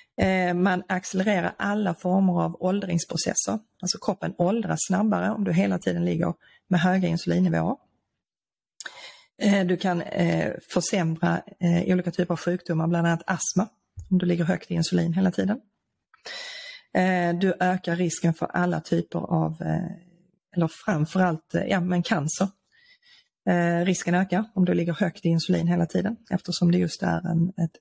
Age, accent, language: 30-49, native, Swedish